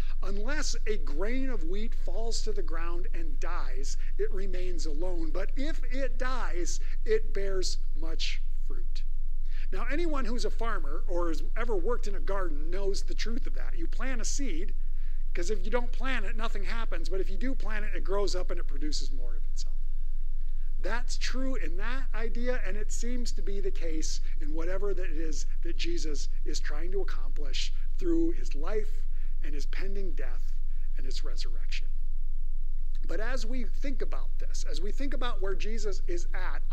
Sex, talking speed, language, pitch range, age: male, 185 wpm, English, 185-260 Hz, 50-69